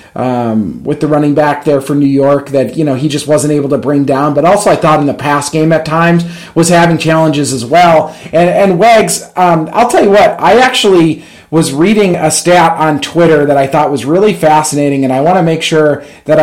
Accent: American